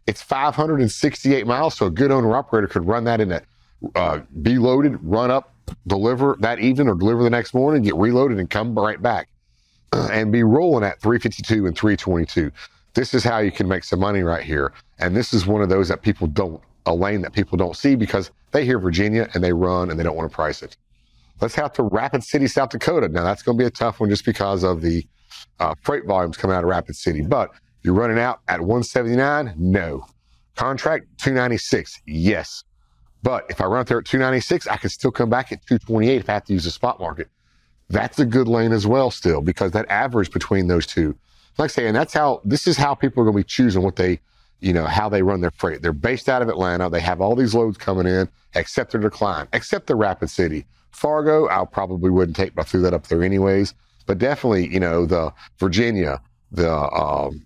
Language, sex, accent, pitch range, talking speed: English, male, American, 90-120 Hz, 220 wpm